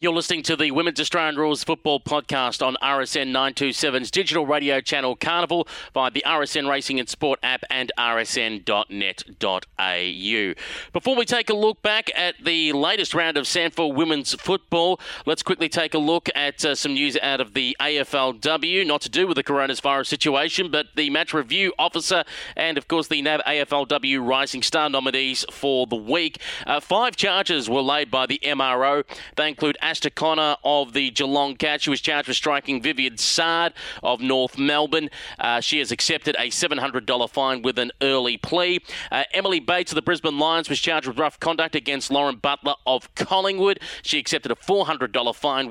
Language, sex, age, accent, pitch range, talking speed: English, male, 30-49, Australian, 135-165 Hz, 175 wpm